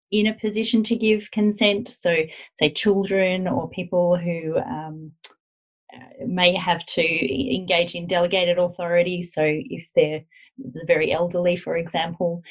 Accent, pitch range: Australian, 170-210 Hz